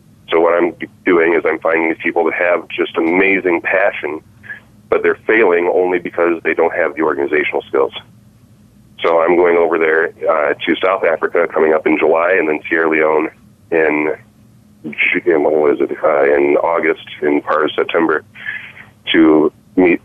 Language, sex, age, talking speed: English, male, 30-49, 160 wpm